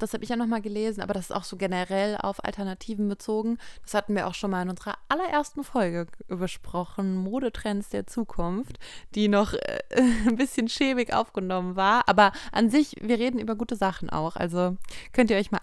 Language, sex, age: German, female, 20-39